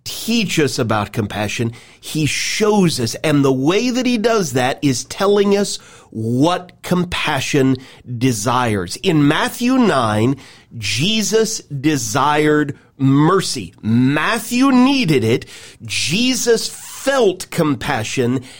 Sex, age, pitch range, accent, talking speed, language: male, 40-59, 140-200 Hz, American, 105 wpm, English